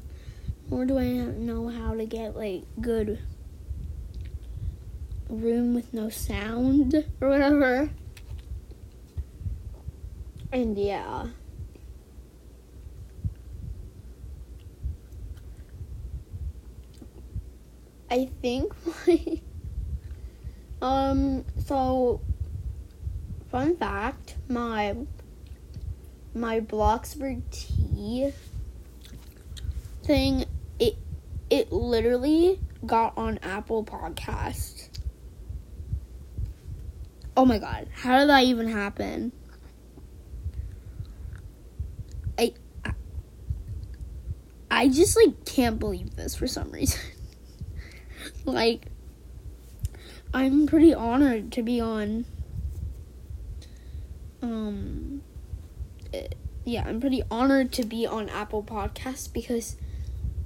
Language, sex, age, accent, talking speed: English, female, 10-29, American, 75 wpm